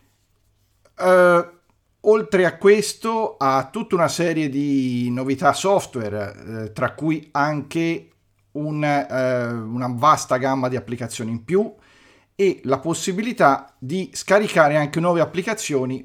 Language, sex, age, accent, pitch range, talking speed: Italian, male, 40-59, native, 115-165 Hz, 105 wpm